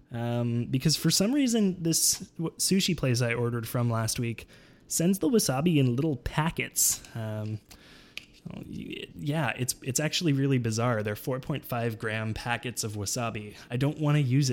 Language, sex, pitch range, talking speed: English, male, 120-170 Hz, 155 wpm